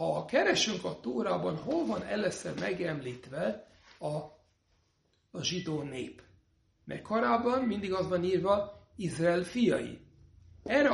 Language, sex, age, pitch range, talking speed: Hungarian, male, 60-79, 165-230 Hz, 120 wpm